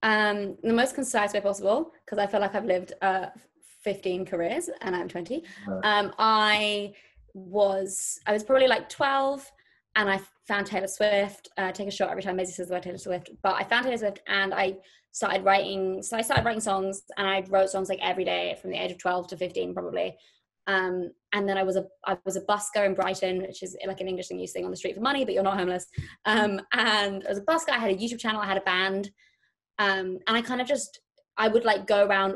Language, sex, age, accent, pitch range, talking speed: English, female, 20-39, British, 190-220 Hz, 235 wpm